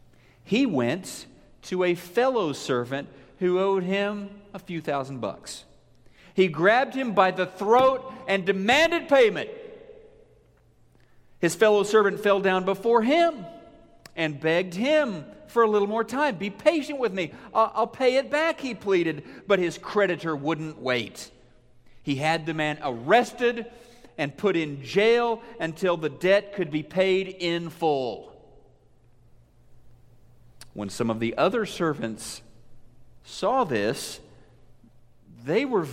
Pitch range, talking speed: 145-220 Hz, 130 wpm